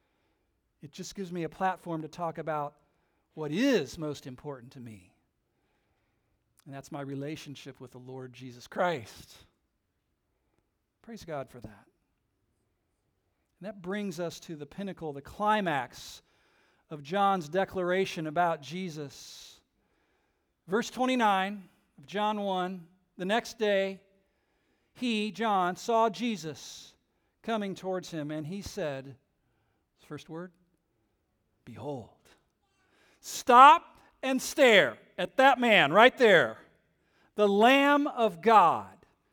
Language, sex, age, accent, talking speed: English, male, 50-69, American, 115 wpm